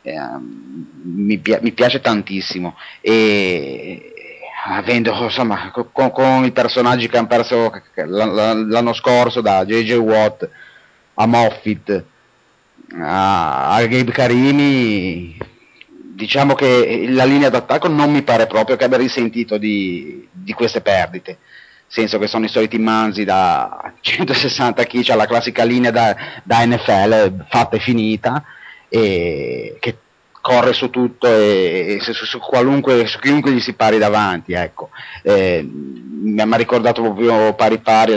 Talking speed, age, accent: 150 wpm, 30-49, native